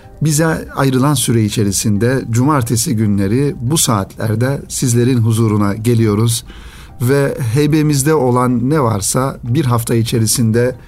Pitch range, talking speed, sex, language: 110-125 Hz, 105 wpm, male, Turkish